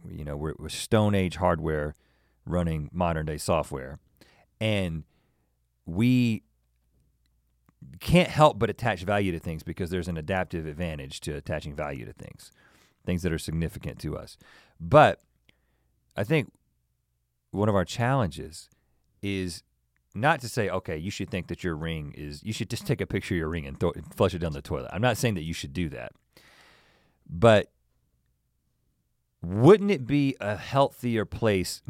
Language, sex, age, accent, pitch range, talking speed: English, male, 40-59, American, 80-115 Hz, 155 wpm